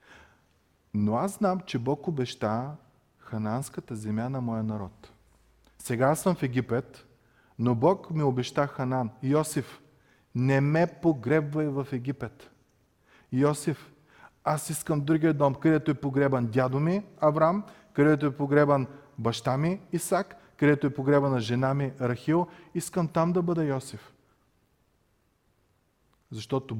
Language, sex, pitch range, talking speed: Bulgarian, male, 115-150 Hz, 125 wpm